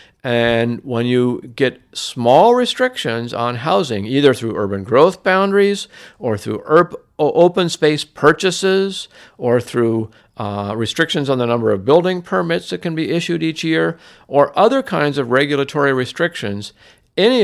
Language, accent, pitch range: English, American, 110-150 Hz